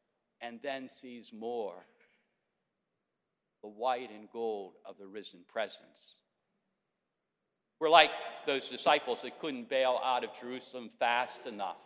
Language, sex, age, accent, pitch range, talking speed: English, male, 50-69, American, 110-150 Hz, 120 wpm